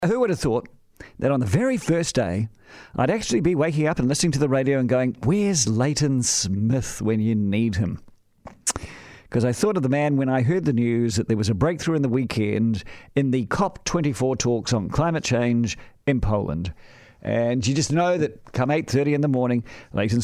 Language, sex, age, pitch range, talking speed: English, male, 50-69, 115-150 Hz, 200 wpm